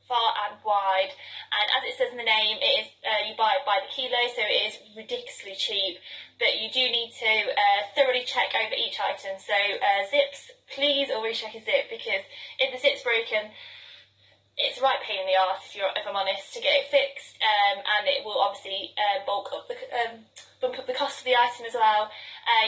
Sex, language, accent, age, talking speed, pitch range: female, English, British, 20-39, 220 wpm, 210-280 Hz